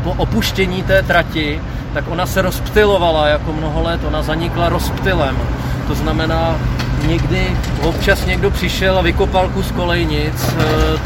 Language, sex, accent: Czech, male, native